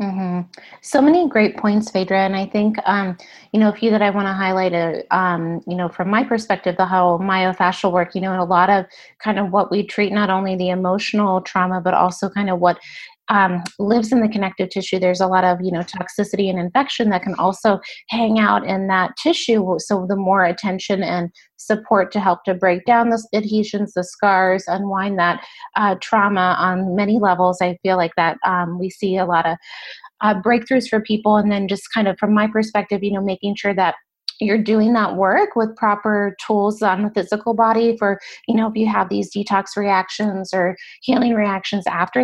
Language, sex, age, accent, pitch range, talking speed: English, female, 30-49, American, 185-215 Hz, 205 wpm